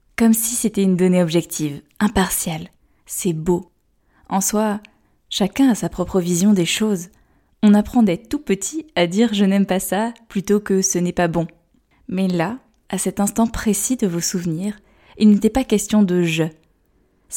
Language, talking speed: French, 195 wpm